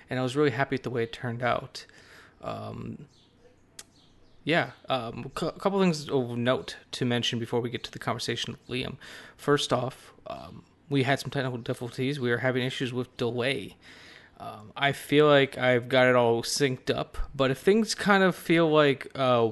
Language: English